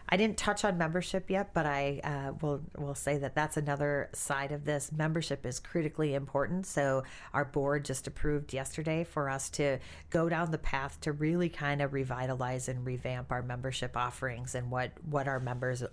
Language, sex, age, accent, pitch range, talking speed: English, female, 40-59, American, 130-160 Hz, 190 wpm